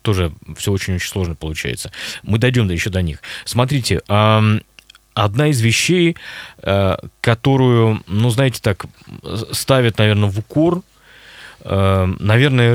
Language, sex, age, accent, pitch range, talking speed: Russian, male, 20-39, native, 95-125 Hz, 115 wpm